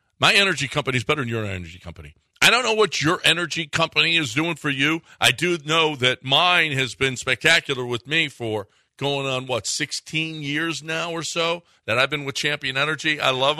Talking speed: 205 wpm